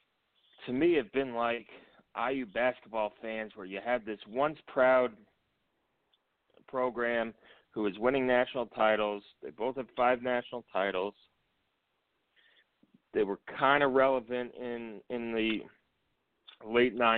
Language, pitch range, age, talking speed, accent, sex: English, 105-125 Hz, 30-49, 120 wpm, American, male